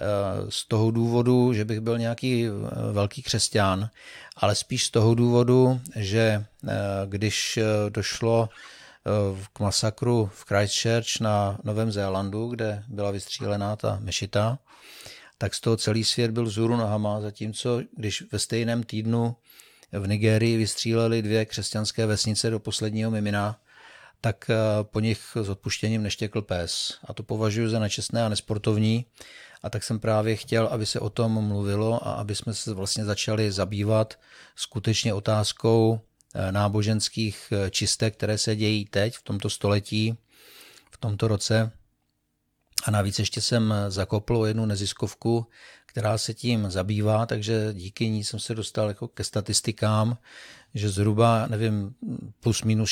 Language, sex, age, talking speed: Czech, male, 50-69, 135 wpm